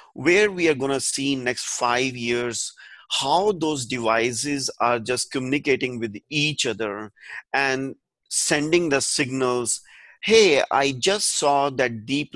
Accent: Indian